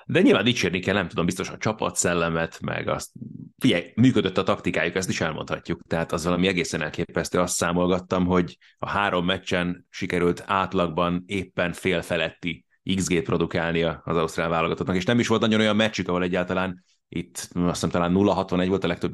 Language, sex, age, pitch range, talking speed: Hungarian, male, 30-49, 90-110 Hz, 170 wpm